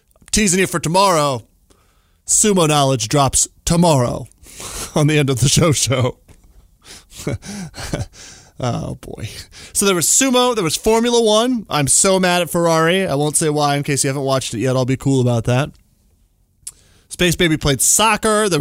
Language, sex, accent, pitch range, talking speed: English, male, American, 125-180 Hz, 165 wpm